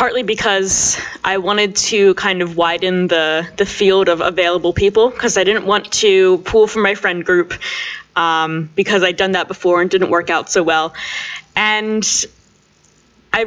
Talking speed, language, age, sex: 170 wpm, English, 10-29, female